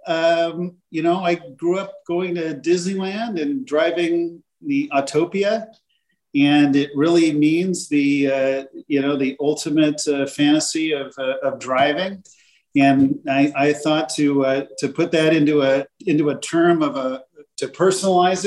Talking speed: 155 wpm